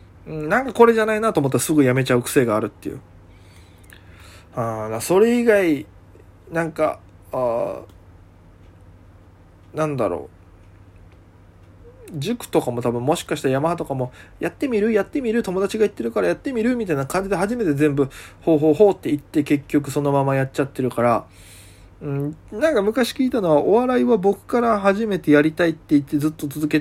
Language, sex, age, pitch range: Japanese, male, 20-39, 100-155 Hz